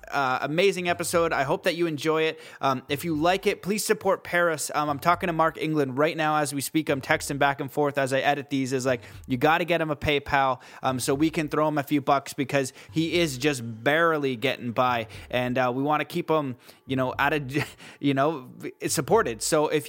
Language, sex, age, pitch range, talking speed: English, male, 20-39, 135-160 Hz, 235 wpm